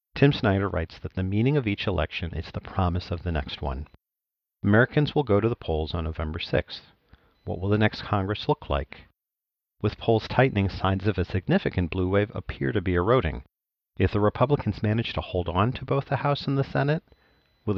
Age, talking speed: 50-69, 205 wpm